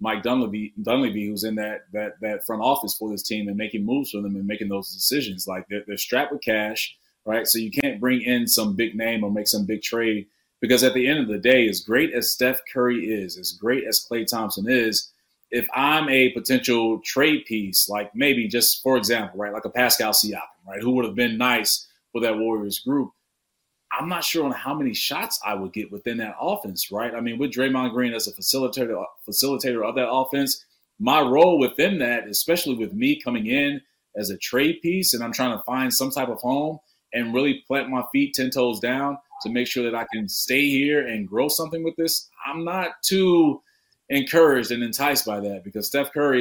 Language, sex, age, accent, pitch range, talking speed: English, male, 30-49, American, 110-140 Hz, 215 wpm